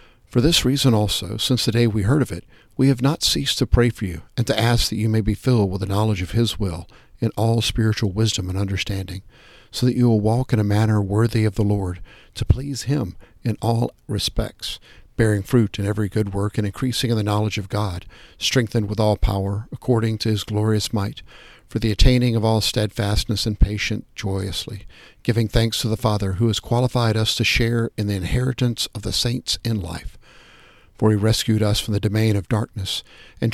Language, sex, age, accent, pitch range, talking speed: English, male, 50-69, American, 105-120 Hz, 210 wpm